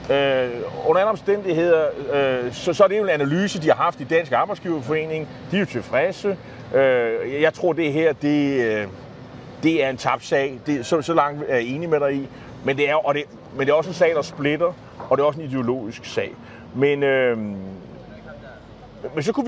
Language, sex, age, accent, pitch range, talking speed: Danish, male, 30-49, native, 125-170 Hz, 190 wpm